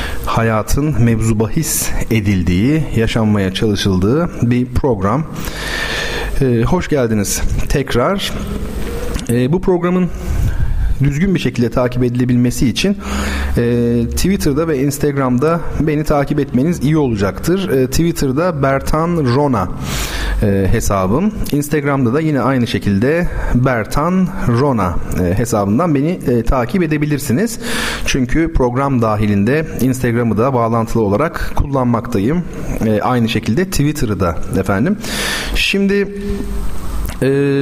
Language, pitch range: Turkish, 110-155 Hz